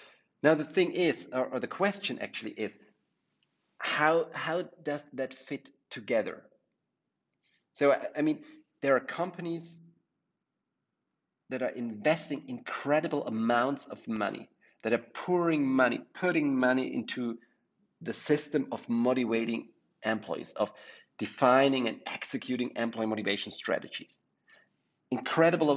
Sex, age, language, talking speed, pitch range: male, 40-59, English, 115 wpm, 115-165 Hz